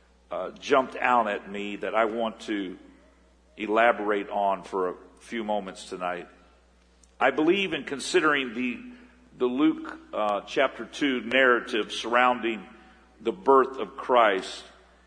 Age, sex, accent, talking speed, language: 50-69, male, American, 125 wpm, English